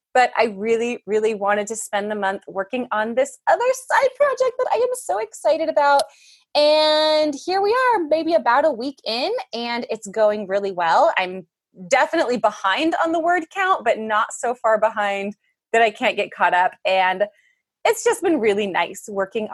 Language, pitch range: English, 210-315 Hz